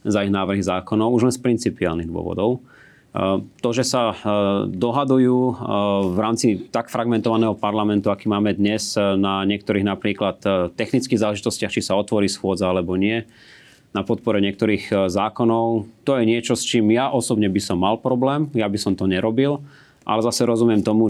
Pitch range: 95-115 Hz